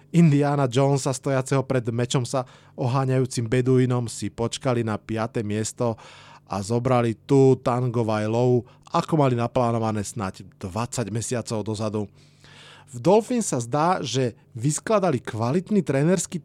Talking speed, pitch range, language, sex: 120 wpm, 125-150 Hz, Slovak, male